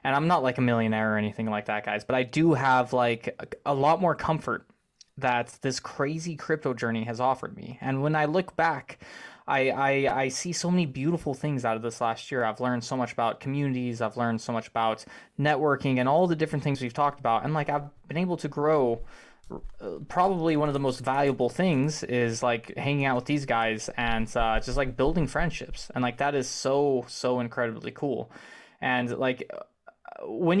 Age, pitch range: 20-39, 120-150 Hz